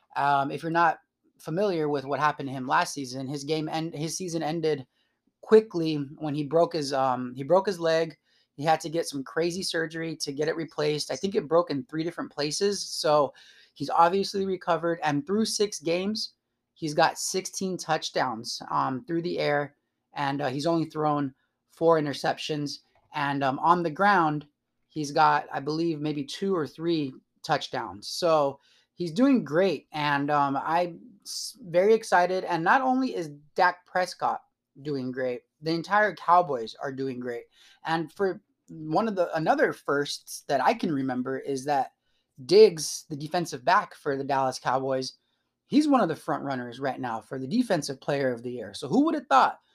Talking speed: 180 wpm